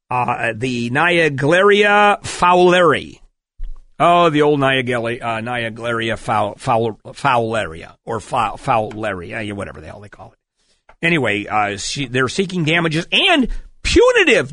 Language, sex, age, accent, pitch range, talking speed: English, male, 50-69, American, 120-170 Hz, 115 wpm